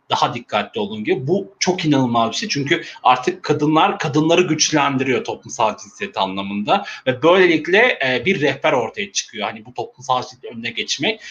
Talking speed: 155 wpm